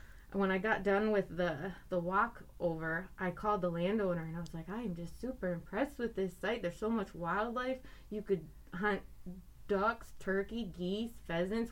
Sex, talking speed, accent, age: female, 190 wpm, American, 20-39